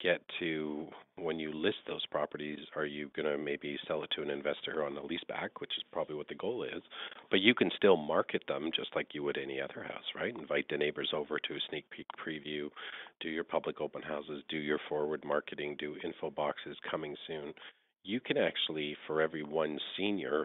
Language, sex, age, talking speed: English, male, 40-59, 210 wpm